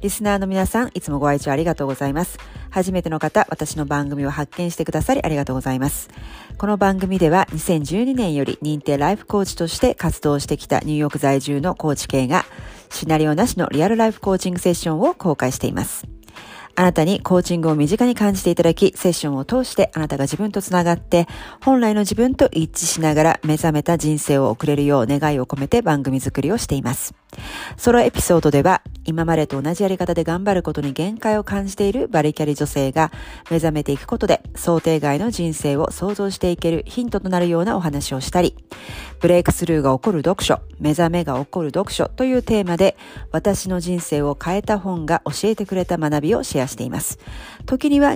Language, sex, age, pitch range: Japanese, female, 40-59, 145-190 Hz